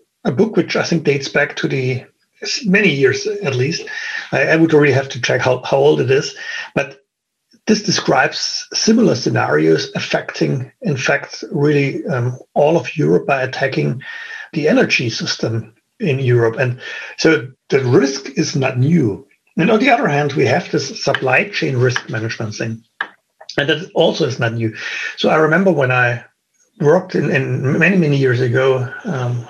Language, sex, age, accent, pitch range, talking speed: English, male, 60-79, German, 125-170 Hz, 170 wpm